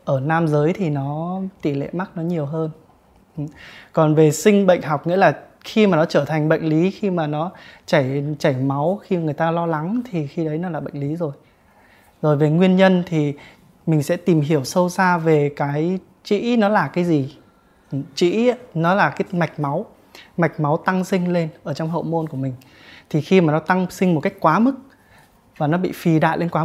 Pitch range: 155-185 Hz